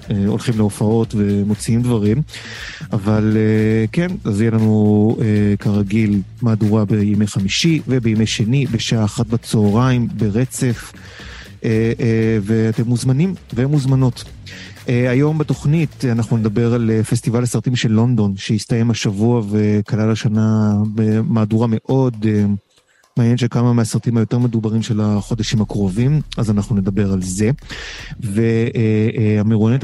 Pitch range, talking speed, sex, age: 105-125 Hz, 105 wpm, male, 30-49